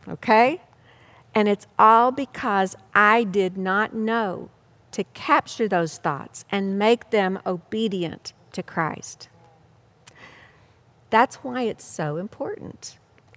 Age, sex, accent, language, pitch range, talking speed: 50-69, female, American, English, 195-275 Hz, 110 wpm